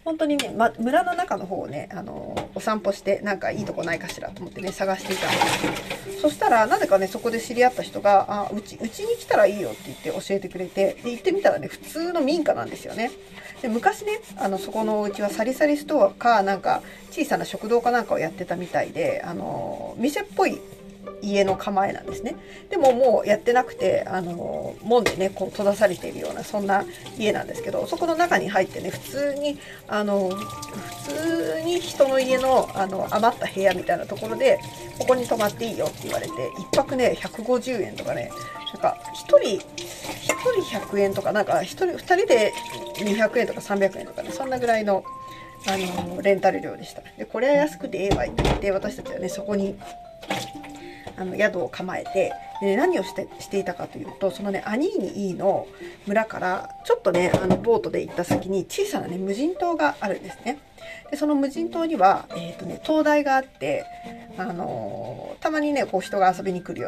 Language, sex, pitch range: Japanese, female, 190-290 Hz